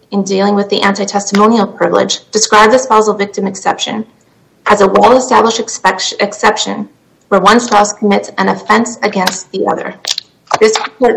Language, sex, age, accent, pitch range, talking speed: English, female, 30-49, American, 205-230 Hz, 140 wpm